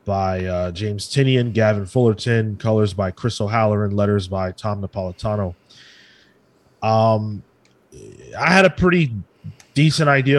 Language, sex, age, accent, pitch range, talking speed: English, male, 30-49, American, 105-135 Hz, 120 wpm